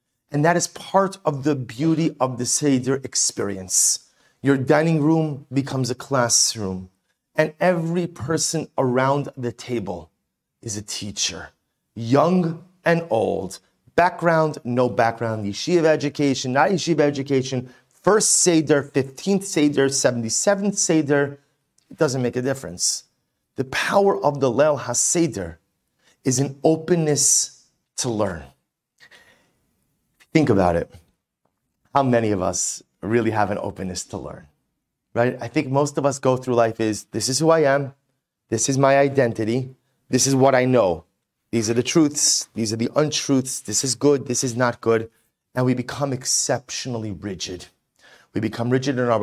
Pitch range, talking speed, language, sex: 115-150 Hz, 145 wpm, English, male